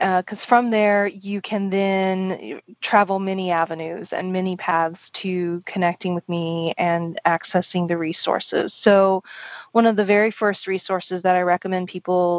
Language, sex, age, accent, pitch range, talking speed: English, female, 30-49, American, 180-210 Hz, 155 wpm